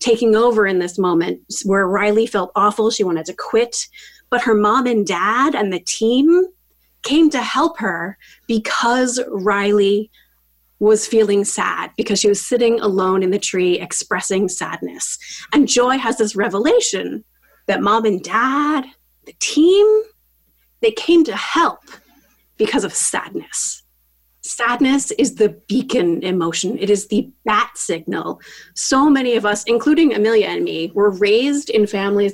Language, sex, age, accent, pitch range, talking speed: English, female, 30-49, American, 195-275 Hz, 150 wpm